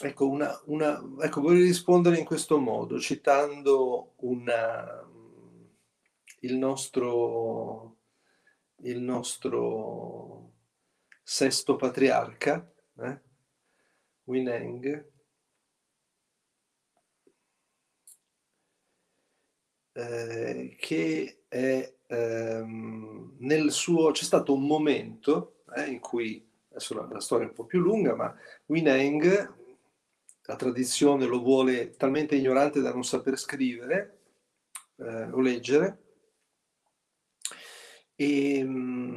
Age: 40-59